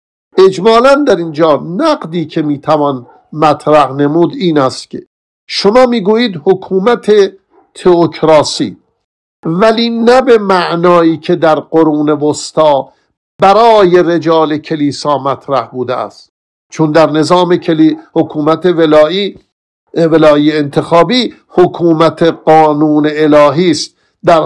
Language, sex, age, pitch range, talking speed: Persian, male, 50-69, 145-175 Hz, 100 wpm